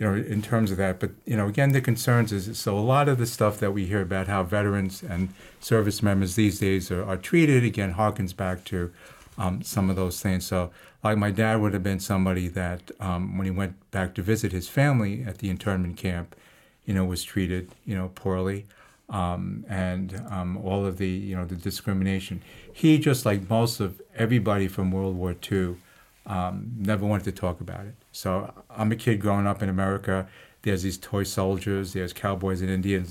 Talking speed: 205 wpm